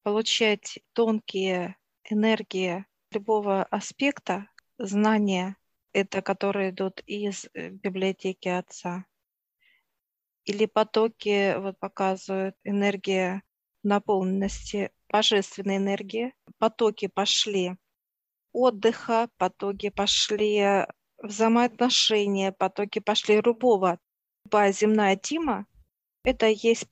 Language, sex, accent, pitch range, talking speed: Russian, female, native, 195-220 Hz, 75 wpm